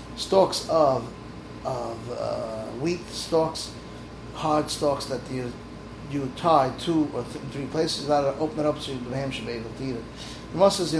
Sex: male